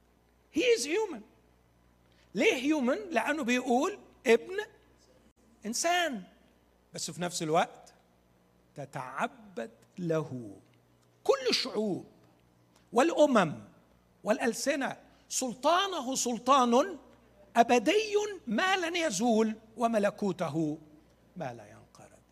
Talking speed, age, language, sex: 65 wpm, 60-79, Arabic, male